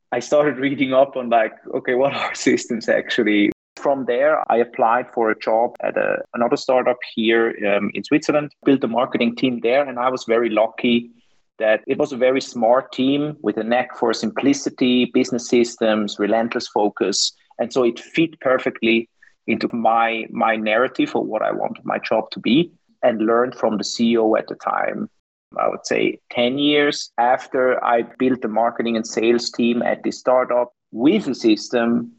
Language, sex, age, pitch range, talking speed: English, male, 30-49, 115-135 Hz, 180 wpm